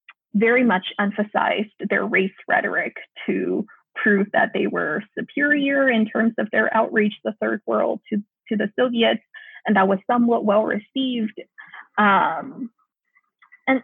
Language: English